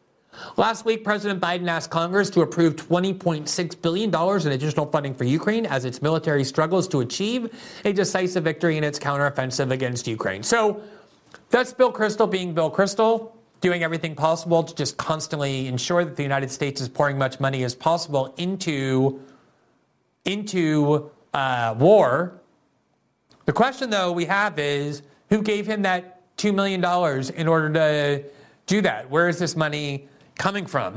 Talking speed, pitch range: 155 wpm, 135-175 Hz